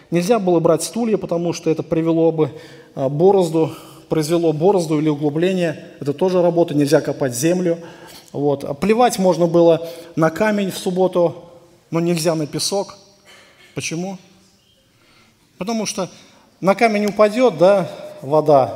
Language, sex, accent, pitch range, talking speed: Russian, male, native, 165-230 Hz, 120 wpm